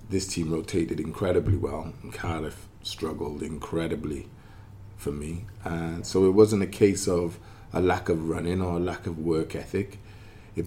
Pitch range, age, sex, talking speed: 85-105 Hz, 20-39, male, 165 wpm